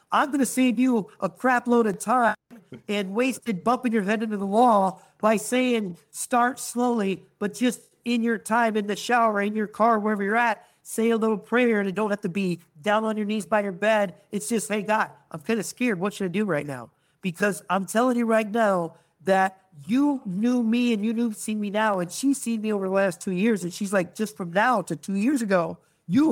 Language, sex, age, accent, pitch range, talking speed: English, male, 50-69, American, 180-230 Hz, 235 wpm